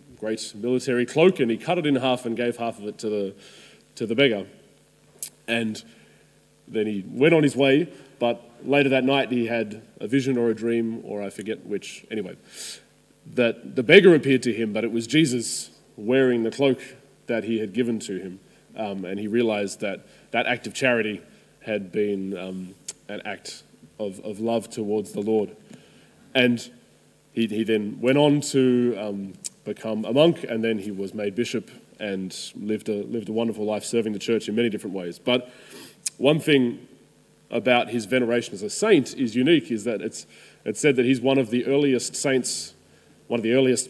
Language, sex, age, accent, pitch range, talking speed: English, male, 20-39, Australian, 110-130 Hz, 190 wpm